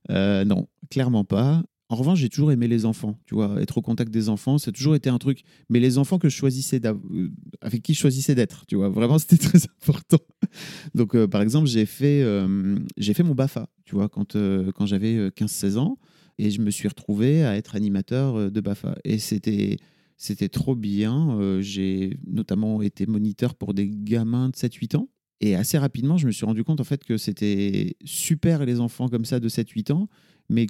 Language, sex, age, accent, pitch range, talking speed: French, male, 30-49, French, 105-145 Hz, 210 wpm